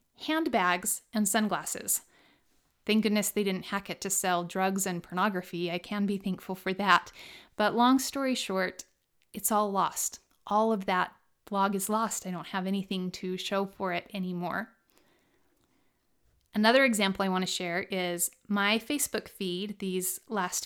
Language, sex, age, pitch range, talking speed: English, female, 30-49, 190-230 Hz, 155 wpm